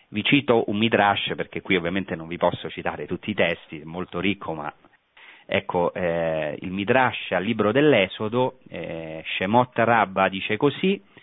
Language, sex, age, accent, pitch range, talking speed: Italian, male, 40-59, native, 90-135 Hz, 160 wpm